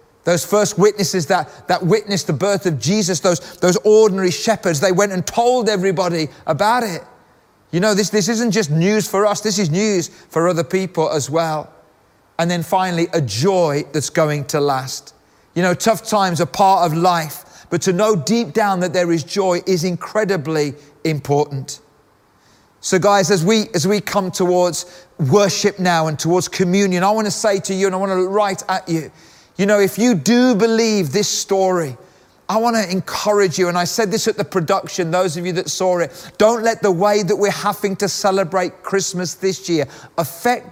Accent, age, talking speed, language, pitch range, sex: British, 30-49, 195 wpm, English, 165-205 Hz, male